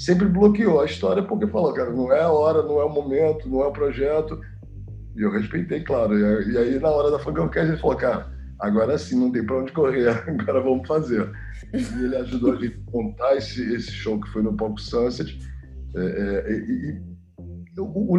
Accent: Brazilian